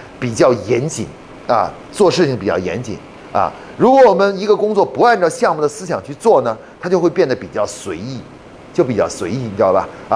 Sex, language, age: male, Chinese, 30-49